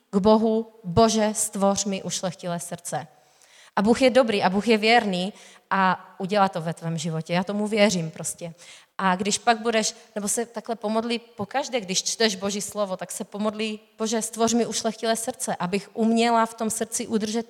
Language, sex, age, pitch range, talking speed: Czech, female, 30-49, 185-230 Hz, 180 wpm